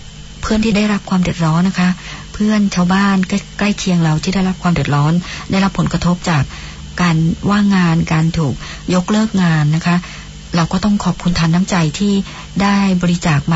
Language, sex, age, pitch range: Thai, male, 60-79, 155-180 Hz